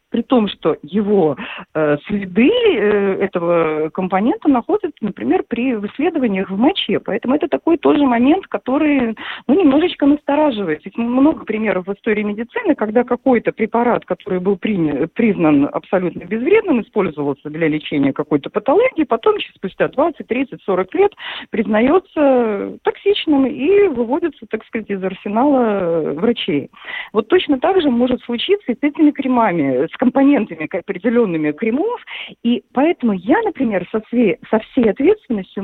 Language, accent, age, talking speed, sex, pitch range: Russian, native, 40-59, 140 wpm, female, 195-285 Hz